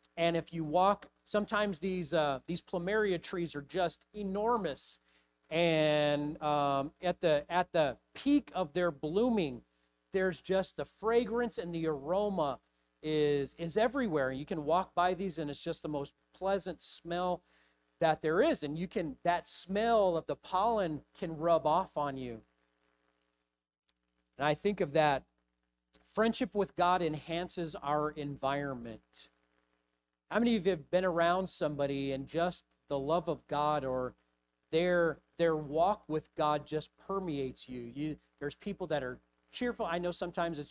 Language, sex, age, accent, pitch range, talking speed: English, male, 40-59, American, 140-185 Hz, 155 wpm